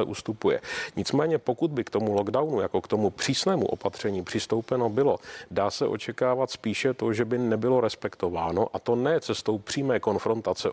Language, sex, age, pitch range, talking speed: Czech, male, 40-59, 105-120 Hz, 160 wpm